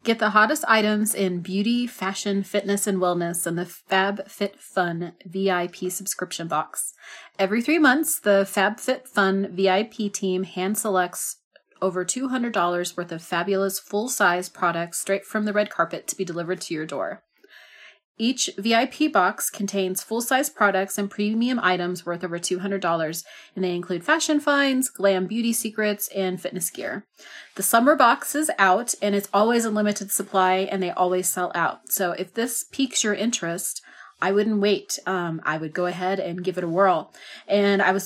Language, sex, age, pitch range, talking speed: English, female, 30-49, 185-220 Hz, 165 wpm